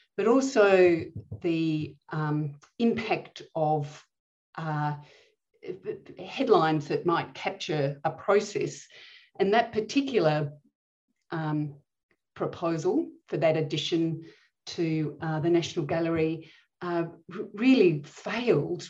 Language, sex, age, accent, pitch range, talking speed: English, female, 40-59, Australian, 155-195 Hz, 90 wpm